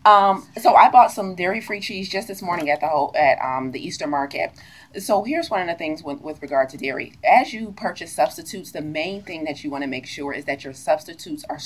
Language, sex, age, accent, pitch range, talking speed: English, female, 30-49, American, 145-190 Hz, 230 wpm